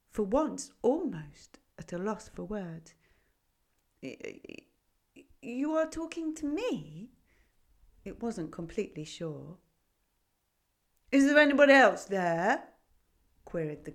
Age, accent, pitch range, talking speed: 40-59, British, 145-240 Hz, 105 wpm